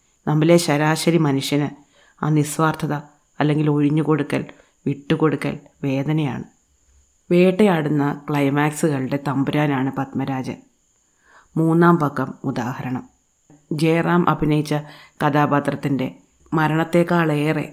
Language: Malayalam